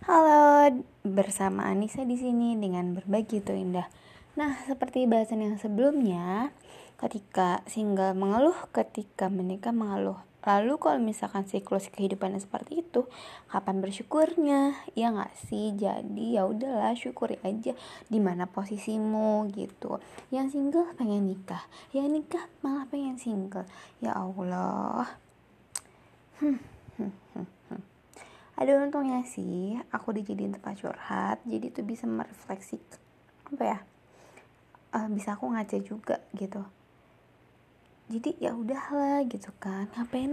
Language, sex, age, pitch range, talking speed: Indonesian, female, 20-39, 195-270 Hz, 115 wpm